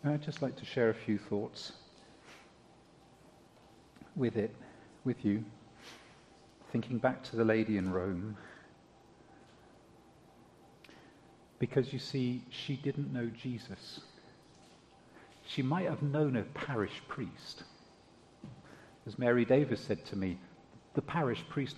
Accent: British